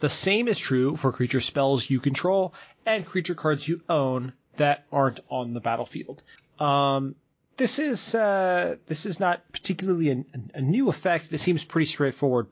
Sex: male